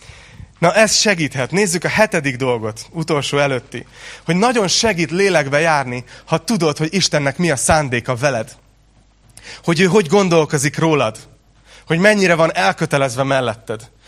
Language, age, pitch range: Hungarian, 30-49, 130-190 Hz